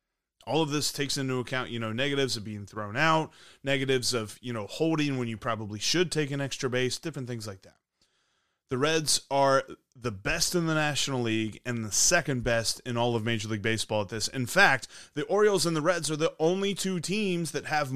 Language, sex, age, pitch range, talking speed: English, male, 30-49, 115-145 Hz, 215 wpm